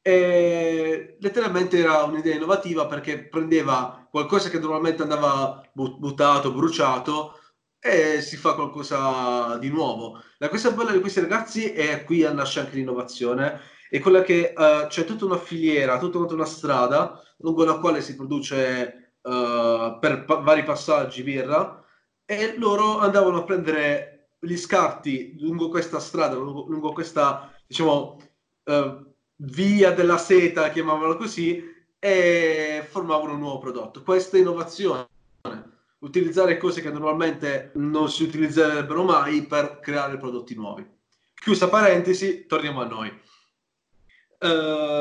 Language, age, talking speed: Italian, 30-49, 130 wpm